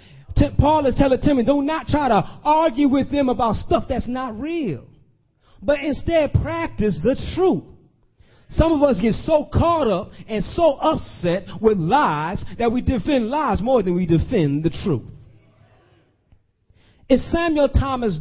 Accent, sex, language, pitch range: American, male, English, 165-270 Hz